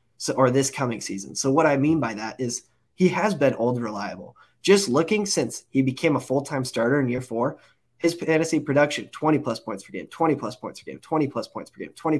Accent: American